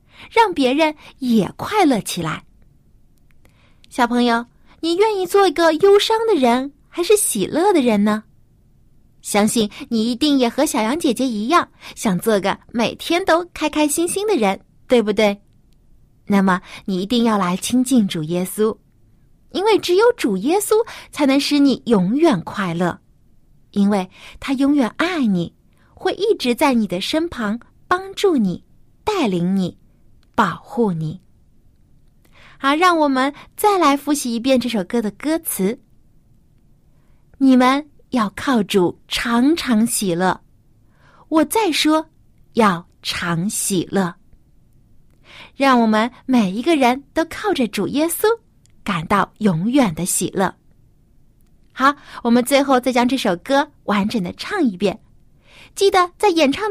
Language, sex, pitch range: Chinese, female, 205-315 Hz